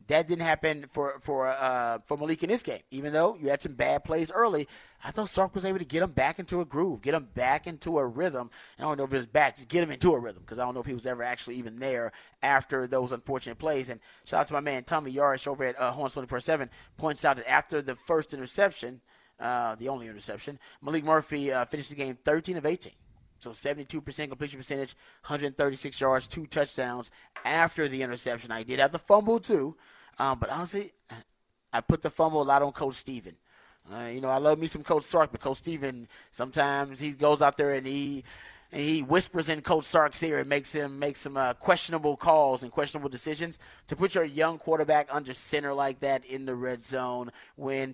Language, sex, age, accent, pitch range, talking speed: English, male, 30-49, American, 130-155 Hz, 225 wpm